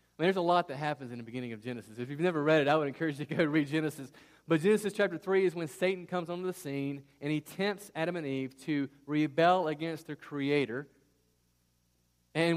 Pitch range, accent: 125-175 Hz, American